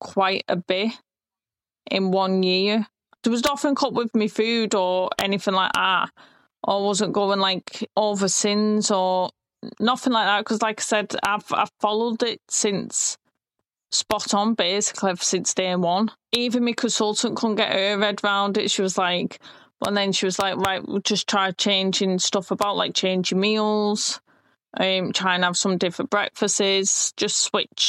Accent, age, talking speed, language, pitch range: British, 20-39, 170 wpm, English, 190-215 Hz